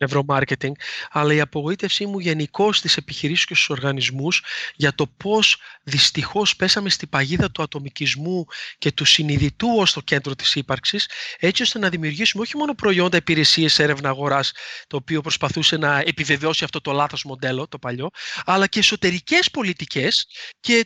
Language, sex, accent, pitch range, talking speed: Greek, male, native, 150-250 Hz, 150 wpm